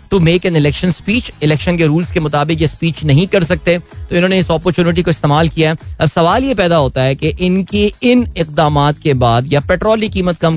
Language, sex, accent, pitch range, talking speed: Hindi, male, native, 145-200 Hz, 220 wpm